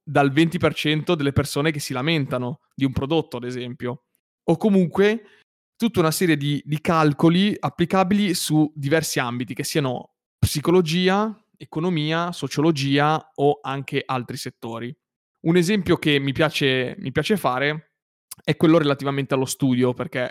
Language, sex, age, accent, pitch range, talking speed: Italian, male, 20-39, native, 130-155 Hz, 135 wpm